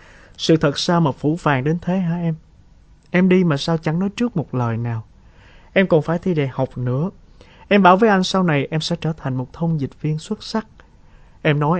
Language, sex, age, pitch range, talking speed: Vietnamese, male, 20-39, 120-170 Hz, 230 wpm